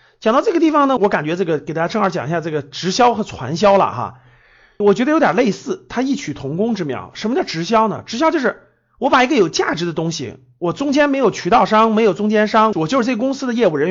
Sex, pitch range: male, 175-270 Hz